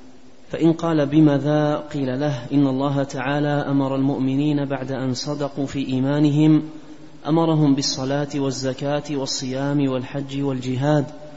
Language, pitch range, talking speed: Arabic, 135-150 Hz, 110 wpm